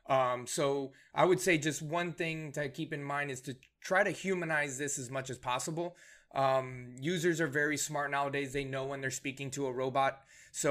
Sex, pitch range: male, 135-155 Hz